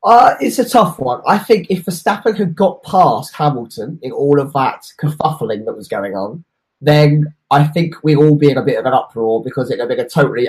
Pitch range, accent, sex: 135-180 Hz, British, male